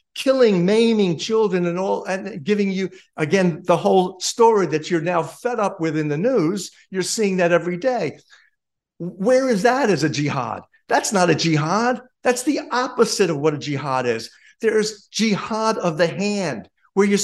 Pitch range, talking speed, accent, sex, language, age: 165-220 Hz, 180 wpm, American, male, English, 50-69